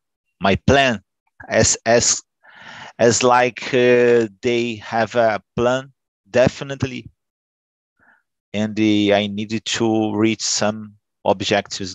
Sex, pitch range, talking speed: male, 95-120 Hz, 100 wpm